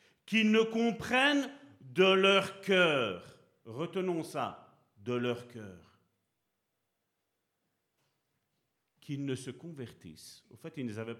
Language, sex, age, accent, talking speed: French, male, 50-69, French, 100 wpm